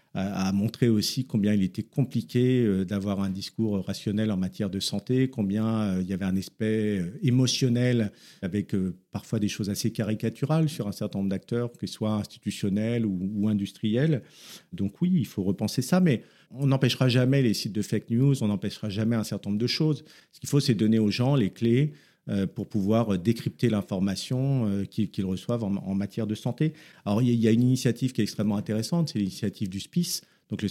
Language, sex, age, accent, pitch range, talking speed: French, male, 50-69, French, 100-120 Hz, 190 wpm